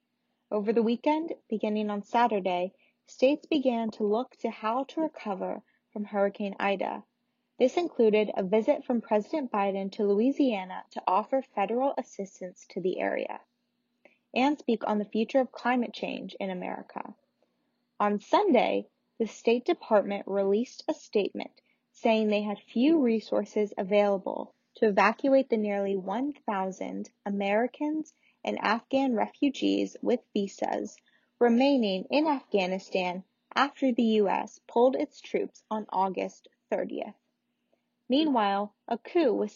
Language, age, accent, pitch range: English, 10-29, American, 205-260 Hz